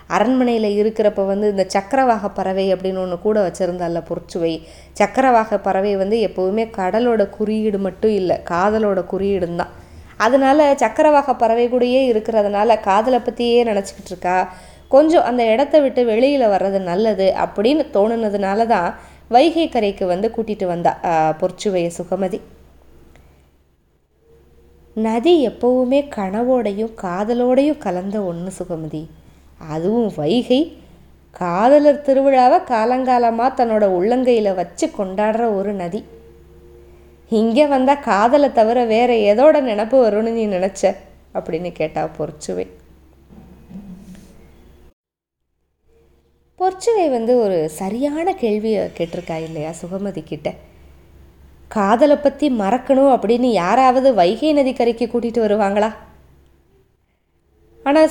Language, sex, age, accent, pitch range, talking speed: Tamil, female, 20-39, native, 175-245 Hz, 100 wpm